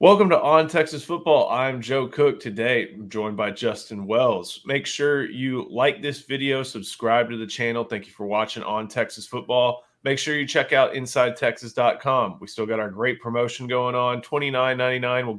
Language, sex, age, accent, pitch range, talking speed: English, male, 20-39, American, 115-140 Hz, 185 wpm